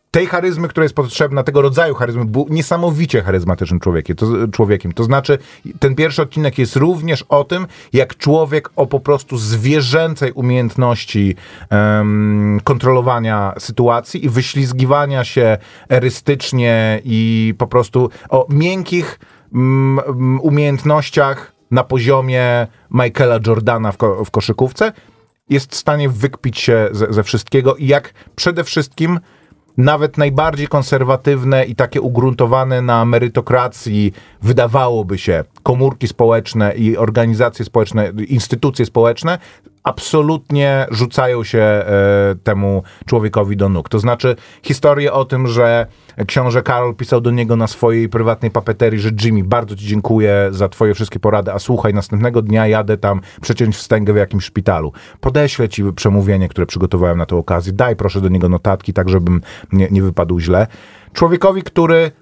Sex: male